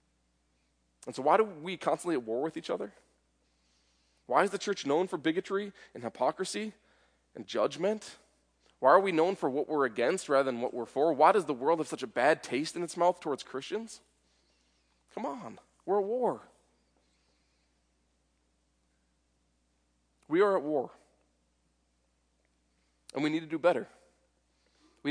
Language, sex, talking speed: English, male, 155 wpm